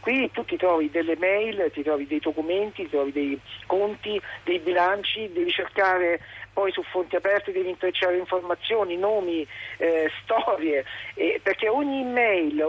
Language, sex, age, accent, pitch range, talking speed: Italian, male, 50-69, native, 160-205 Hz, 150 wpm